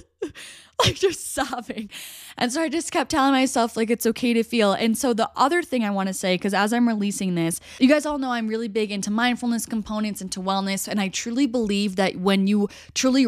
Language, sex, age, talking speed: English, female, 10-29, 220 wpm